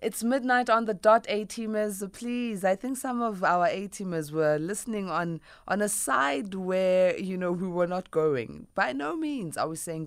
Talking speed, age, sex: 190 wpm, 20-39, female